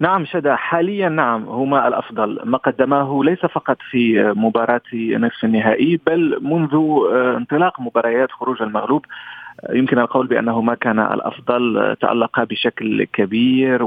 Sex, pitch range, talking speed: male, 115-145 Hz, 120 wpm